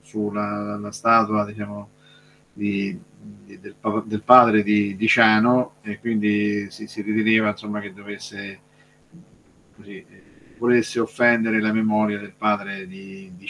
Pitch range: 100-110 Hz